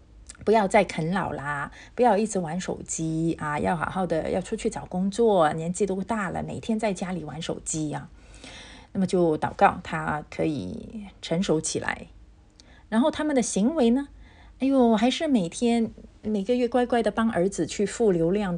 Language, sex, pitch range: Chinese, female, 170-240 Hz